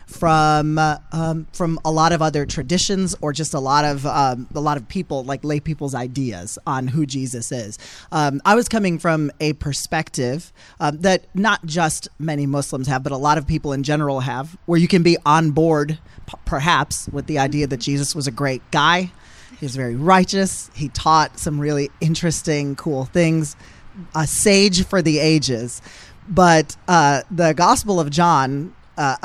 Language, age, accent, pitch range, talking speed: English, 30-49, American, 140-170 Hz, 185 wpm